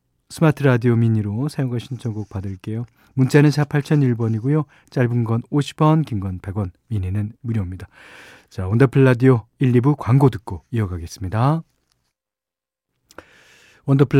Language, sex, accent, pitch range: Korean, male, native, 105-145 Hz